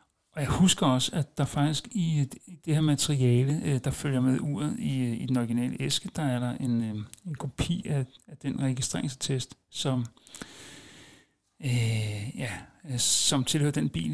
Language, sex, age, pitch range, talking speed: Danish, male, 60-79, 120-145 Hz, 155 wpm